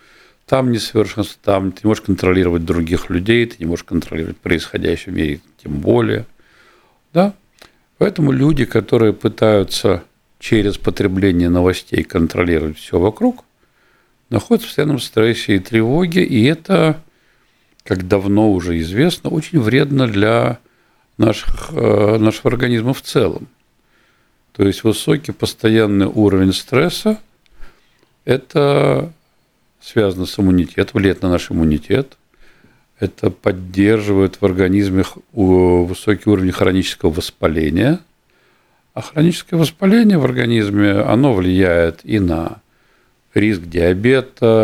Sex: male